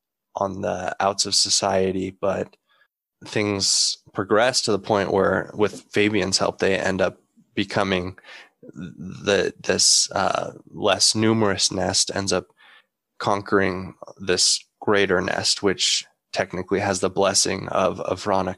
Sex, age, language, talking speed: male, 20-39, English, 125 wpm